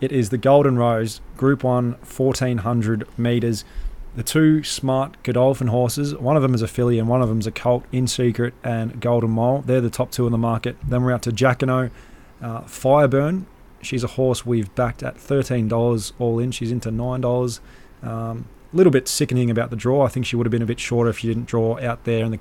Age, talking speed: 20-39, 220 wpm